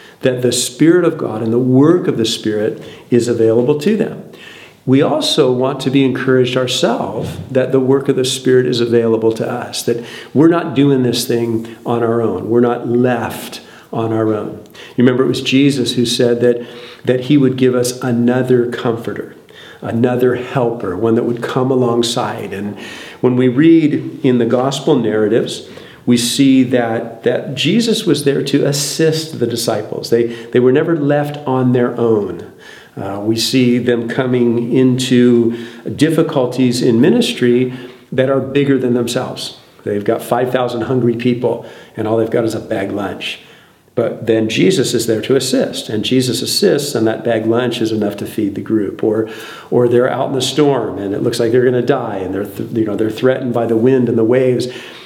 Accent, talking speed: American, 185 wpm